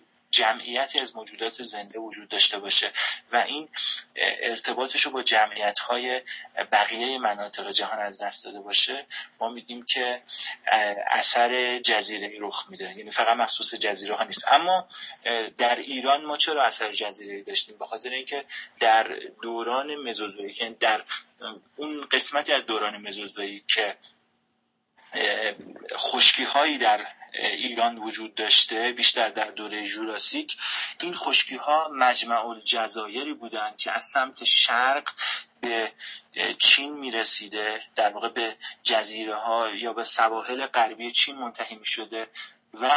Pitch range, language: 110-140 Hz, Persian